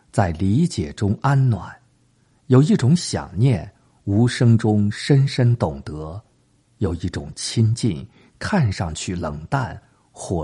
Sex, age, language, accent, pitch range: male, 50-69, Chinese, native, 95-125 Hz